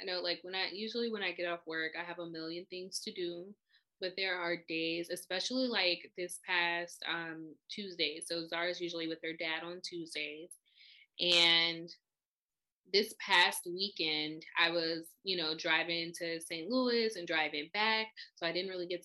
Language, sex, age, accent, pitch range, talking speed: English, female, 20-39, American, 170-200 Hz, 175 wpm